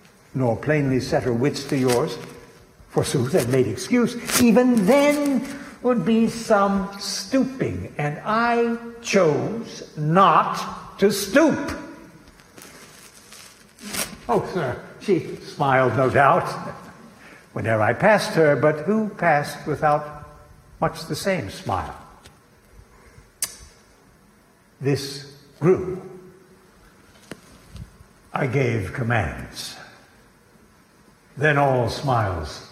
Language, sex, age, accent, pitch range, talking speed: English, male, 70-89, American, 135-215 Hz, 90 wpm